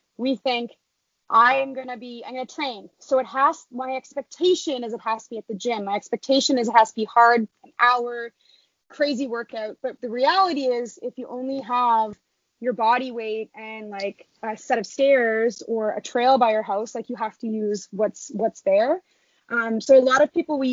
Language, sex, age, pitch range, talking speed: English, female, 20-39, 220-270 Hz, 210 wpm